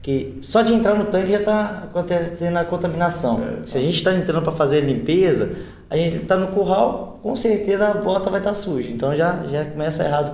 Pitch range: 135-175 Hz